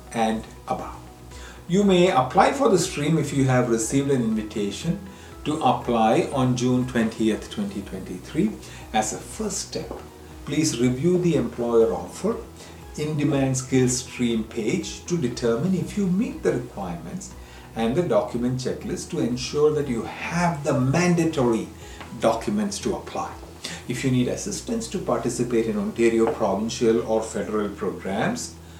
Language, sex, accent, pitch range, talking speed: English, male, Indian, 110-165 Hz, 140 wpm